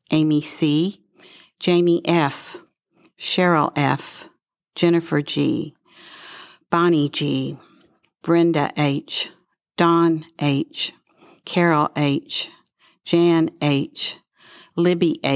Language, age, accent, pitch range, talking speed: English, 50-69, American, 140-170 Hz, 75 wpm